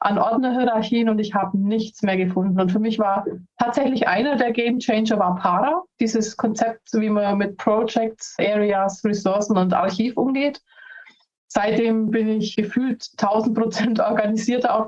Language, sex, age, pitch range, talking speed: German, female, 30-49, 195-230 Hz, 155 wpm